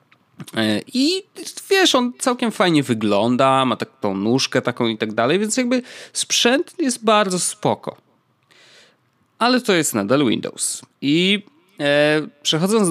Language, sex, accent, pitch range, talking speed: Polish, male, native, 115-155 Hz, 120 wpm